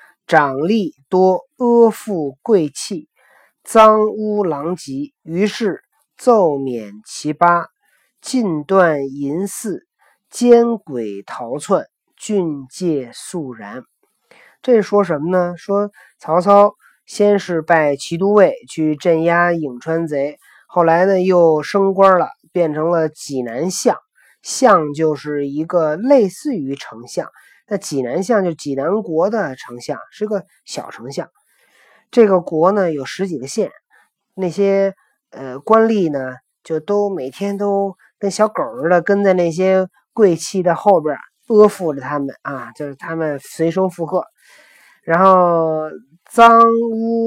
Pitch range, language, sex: 155-205 Hz, Chinese, male